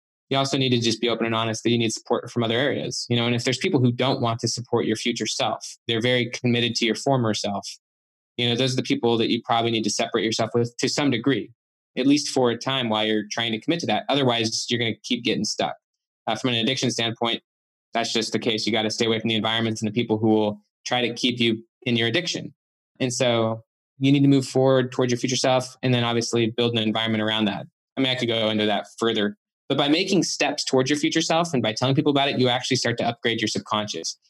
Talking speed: 260 wpm